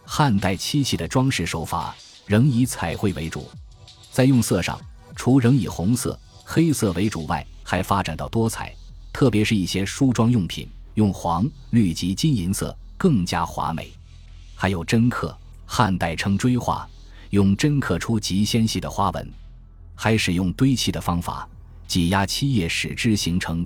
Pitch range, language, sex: 85-115 Hz, Chinese, male